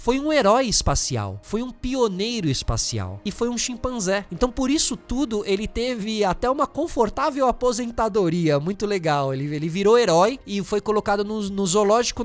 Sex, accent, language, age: male, Brazilian, Portuguese, 20-39